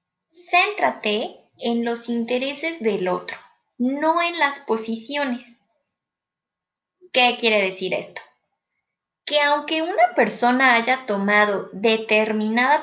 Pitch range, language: 205-285 Hz, Spanish